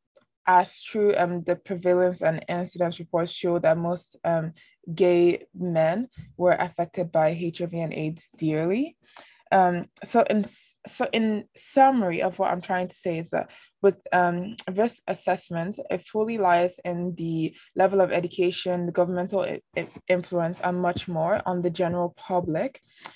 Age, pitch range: 20-39, 175-195 Hz